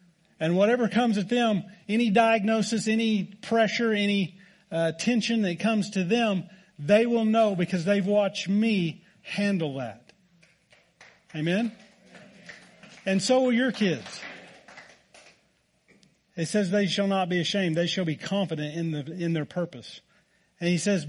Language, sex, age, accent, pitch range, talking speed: English, male, 40-59, American, 155-195 Hz, 140 wpm